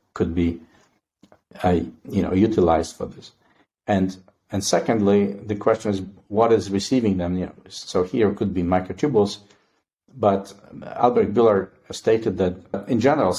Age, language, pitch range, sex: 50-69, English, 90-105 Hz, male